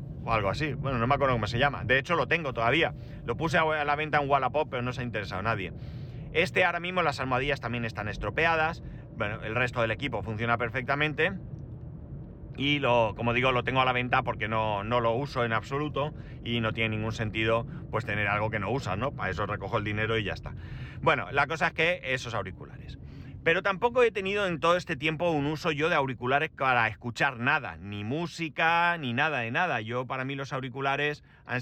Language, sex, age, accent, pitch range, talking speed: Spanish, male, 30-49, Spanish, 115-145 Hz, 220 wpm